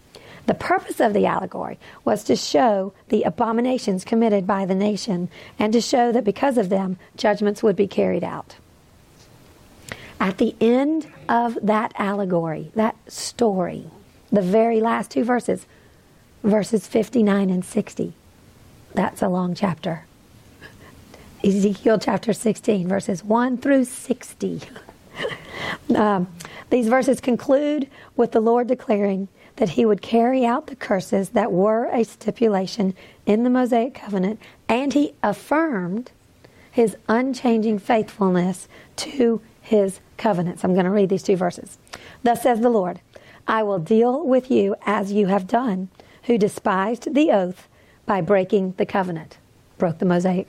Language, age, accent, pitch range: English, 50-69, American, 190-240 Hz